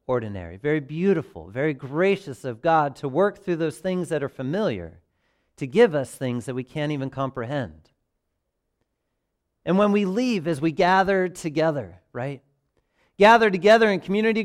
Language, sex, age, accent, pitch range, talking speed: English, male, 40-59, American, 135-200 Hz, 155 wpm